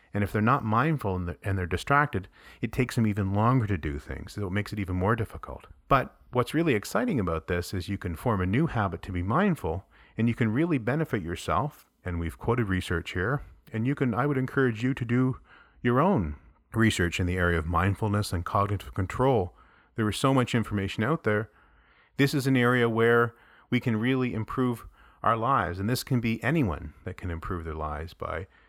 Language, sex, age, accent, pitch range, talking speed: English, male, 40-59, American, 90-120 Hz, 210 wpm